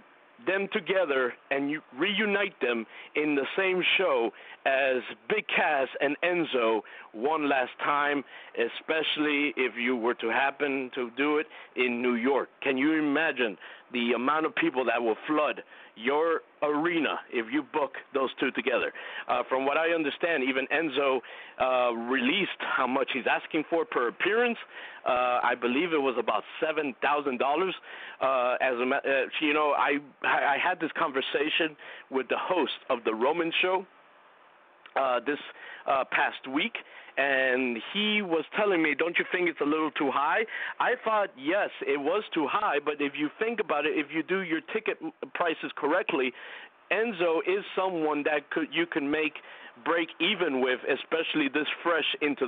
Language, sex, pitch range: English, male, 135-175 Hz